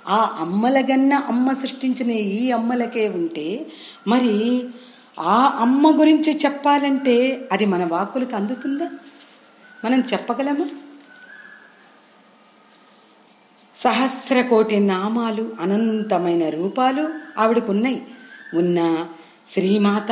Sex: female